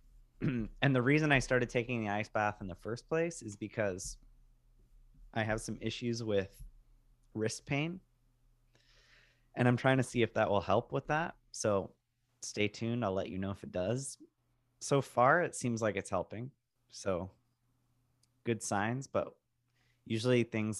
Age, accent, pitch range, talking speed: 30-49, American, 105-125 Hz, 160 wpm